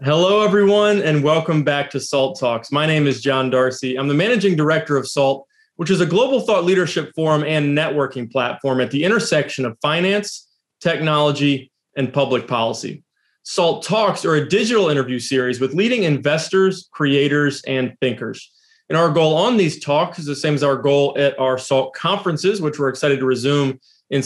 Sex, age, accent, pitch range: male, 30-49, American, 135-170 Hz